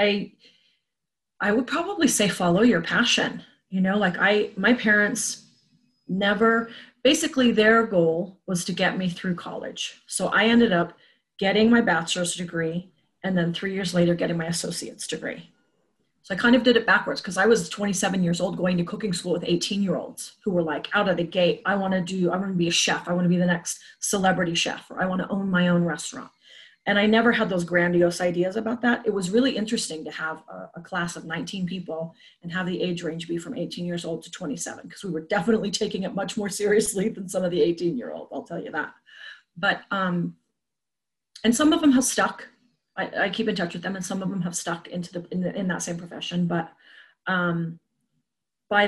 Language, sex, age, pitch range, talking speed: English, female, 30-49, 175-215 Hz, 220 wpm